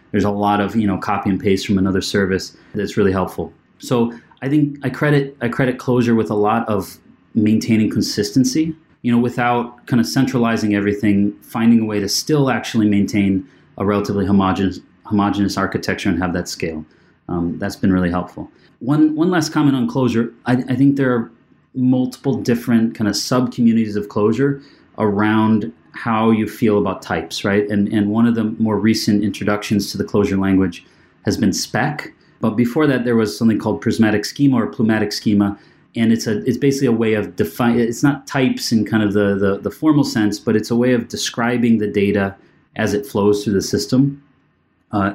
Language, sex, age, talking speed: English, male, 30-49, 195 wpm